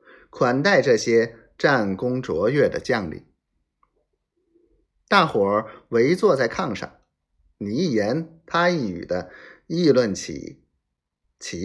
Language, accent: Chinese, native